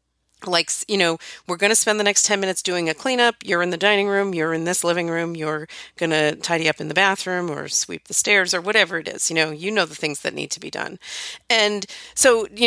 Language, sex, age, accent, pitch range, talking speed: English, female, 40-59, American, 160-200 Hz, 255 wpm